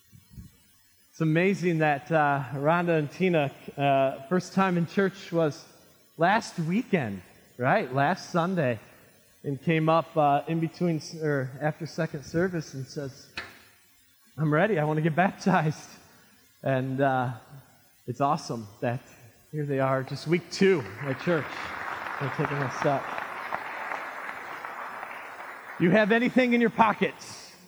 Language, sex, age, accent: English, male, 20-39, American